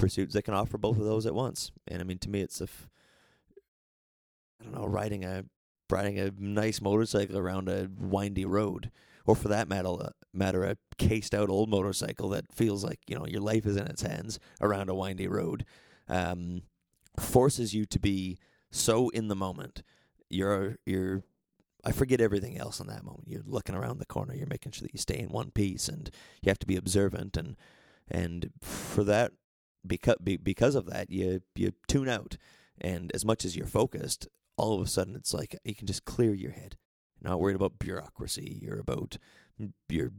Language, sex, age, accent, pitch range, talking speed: English, male, 30-49, American, 95-115 Hz, 195 wpm